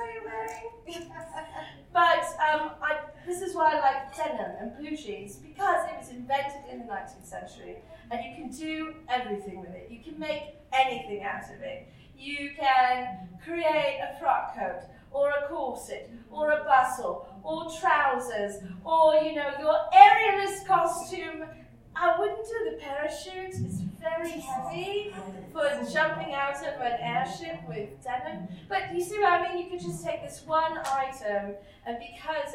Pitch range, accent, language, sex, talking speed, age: 210-320 Hz, British, English, female, 155 wpm, 30-49